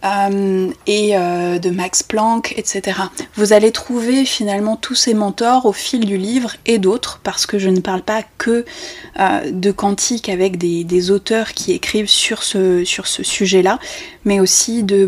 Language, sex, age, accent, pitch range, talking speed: French, female, 20-39, French, 190-225 Hz, 160 wpm